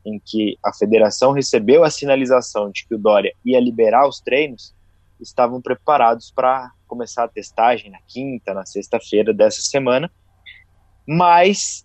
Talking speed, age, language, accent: 140 wpm, 20-39, Portuguese, Brazilian